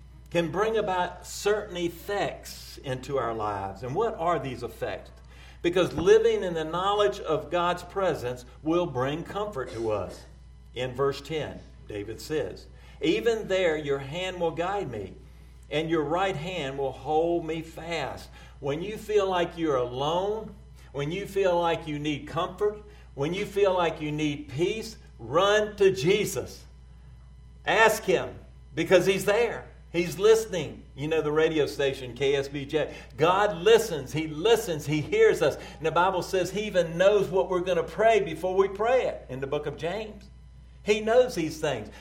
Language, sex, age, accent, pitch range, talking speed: English, male, 50-69, American, 130-185 Hz, 165 wpm